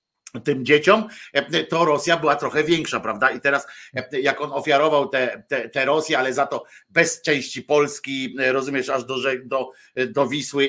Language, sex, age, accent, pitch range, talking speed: Polish, male, 50-69, native, 135-175 Hz, 165 wpm